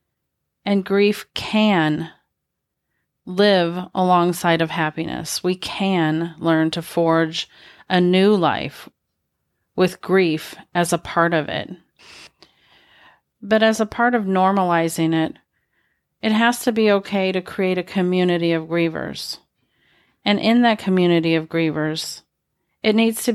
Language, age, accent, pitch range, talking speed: English, 40-59, American, 165-190 Hz, 125 wpm